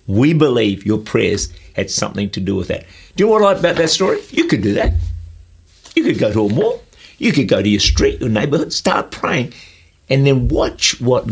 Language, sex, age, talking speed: English, male, 50-69, 230 wpm